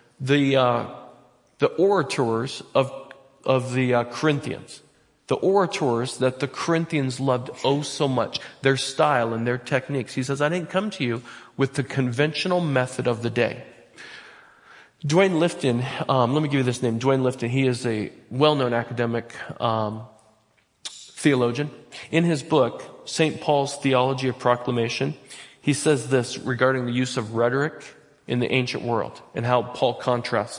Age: 40-59